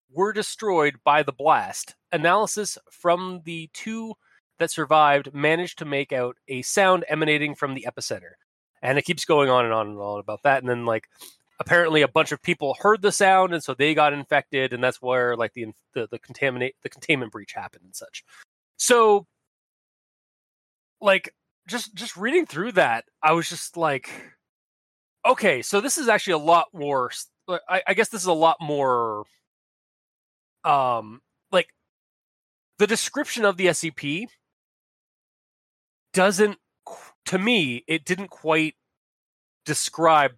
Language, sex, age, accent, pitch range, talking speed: English, male, 30-49, American, 130-185 Hz, 155 wpm